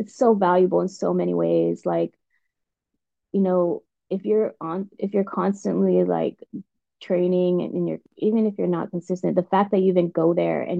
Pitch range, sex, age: 165-195 Hz, female, 20-39